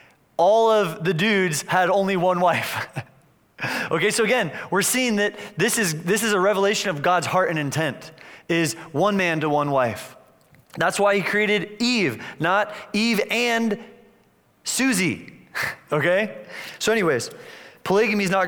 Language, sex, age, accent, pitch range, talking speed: English, male, 30-49, American, 165-210 Hz, 150 wpm